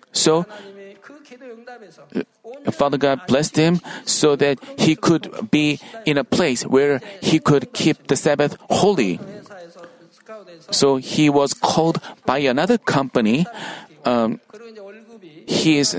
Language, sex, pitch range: Korean, male, 140-205 Hz